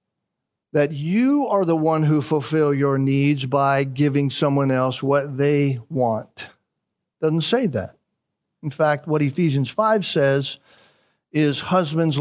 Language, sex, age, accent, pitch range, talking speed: English, male, 50-69, American, 155-215 Hz, 135 wpm